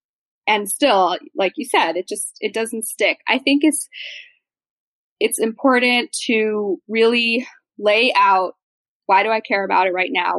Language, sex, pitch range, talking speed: English, female, 190-265 Hz, 155 wpm